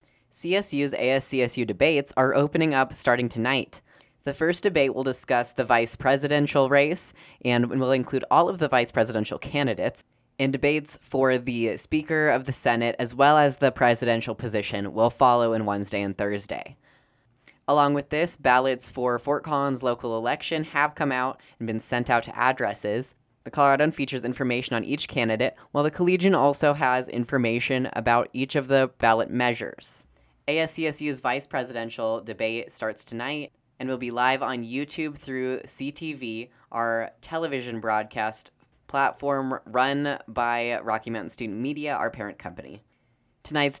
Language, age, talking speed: English, 10-29, 150 wpm